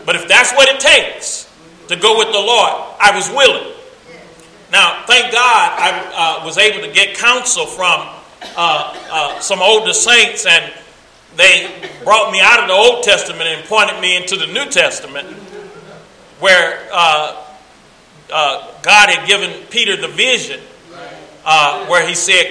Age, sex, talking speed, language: 40-59, male, 155 wpm, English